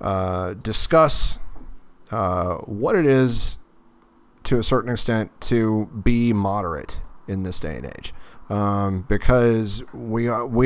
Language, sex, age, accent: English, male, 30-49, American